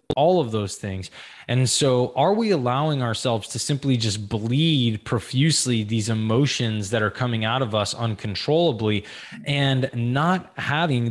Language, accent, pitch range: English, American, 115-140 Hz